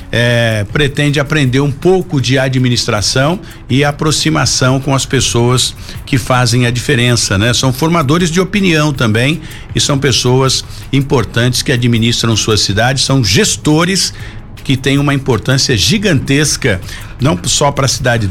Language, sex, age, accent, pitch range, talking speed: Portuguese, male, 60-79, Brazilian, 120-155 Hz, 140 wpm